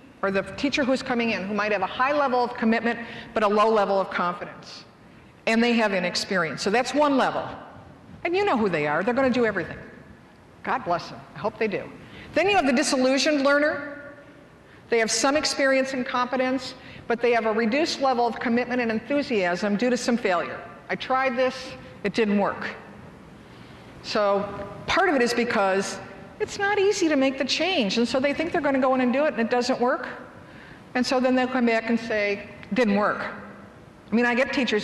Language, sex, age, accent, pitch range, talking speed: English, female, 50-69, American, 200-260 Hz, 205 wpm